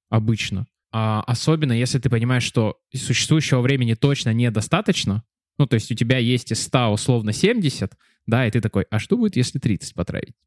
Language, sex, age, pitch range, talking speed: Russian, male, 20-39, 115-145 Hz, 180 wpm